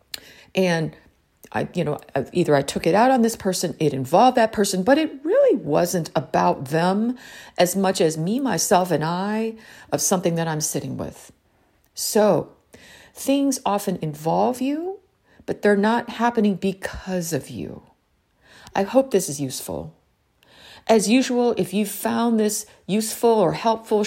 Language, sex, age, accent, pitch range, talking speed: English, female, 50-69, American, 170-225 Hz, 155 wpm